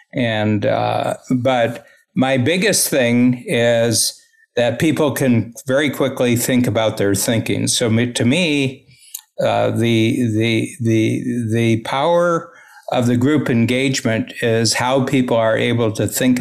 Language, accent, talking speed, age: English, American, 135 wpm, 60-79